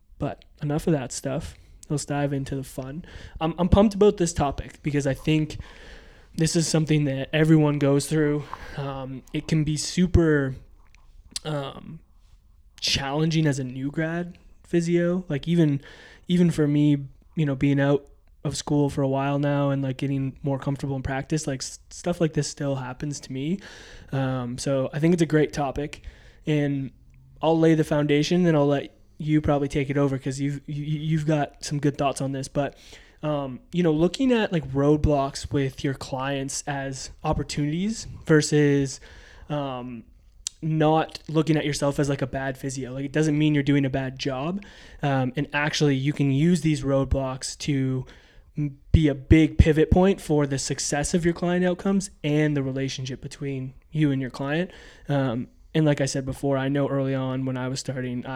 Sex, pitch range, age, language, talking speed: male, 135-155 Hz, 20-39, English, 180 wpm